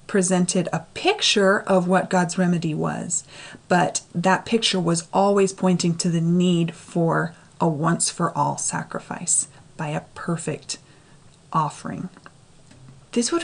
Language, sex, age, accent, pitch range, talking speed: English, female, 30-49, American, 150-190 Hz, 120 wpm